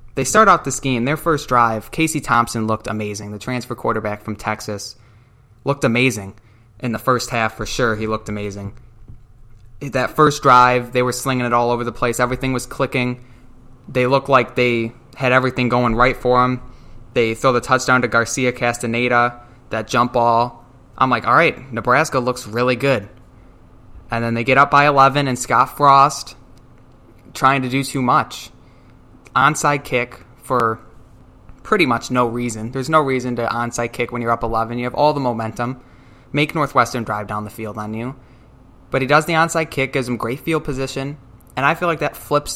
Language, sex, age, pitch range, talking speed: English, male, 20-39, 115-135 Hz, 185 wpm